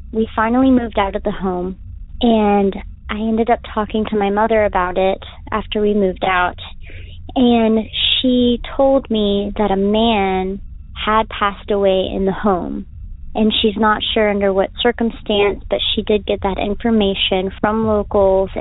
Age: 30-49